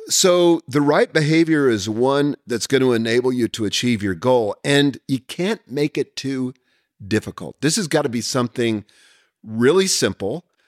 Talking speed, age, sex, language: 170 wpm, 50-69, male, English